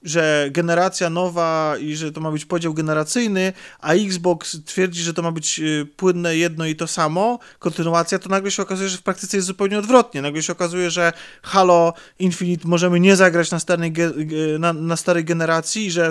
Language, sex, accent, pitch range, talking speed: Polish, male, native, 160-195 Hz, 175 wpm